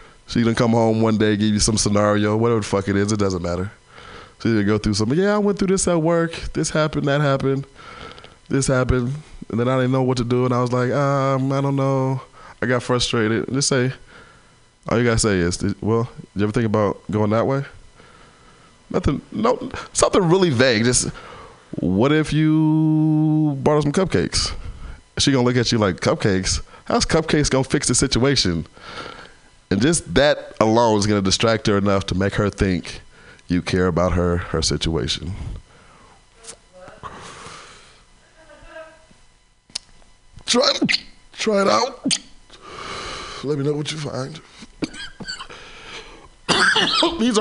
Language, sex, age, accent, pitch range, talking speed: English, male, 20-39, American, 100-150 Hz, 160 wpm